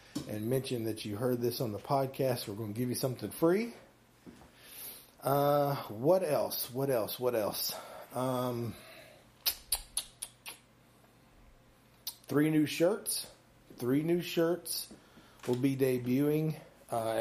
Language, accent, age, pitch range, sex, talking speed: English, American, 30-49, 120-150 Hz, male, 120 wpm